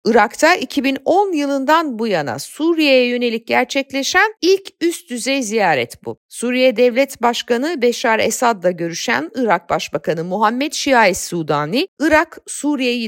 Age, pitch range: 50-69, 210-300 Hz